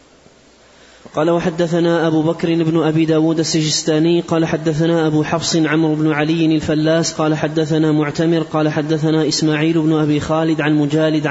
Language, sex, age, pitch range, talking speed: Arabic, male, 20-39, 155-165 Hz, 145 wpm